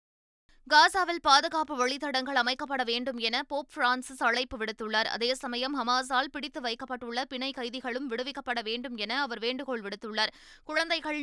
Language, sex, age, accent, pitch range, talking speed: Tamil, female, 20-39, native, 240-280 Hz, 130 wpm